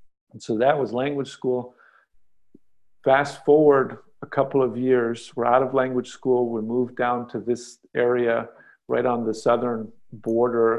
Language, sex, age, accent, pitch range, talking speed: English, male, 50-69, American, 110-130 Hz, 155 wpm